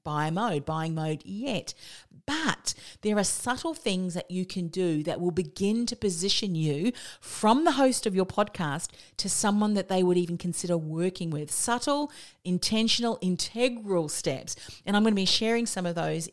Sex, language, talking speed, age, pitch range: female, English, 175 wpm, 40-59, 160-210 Hz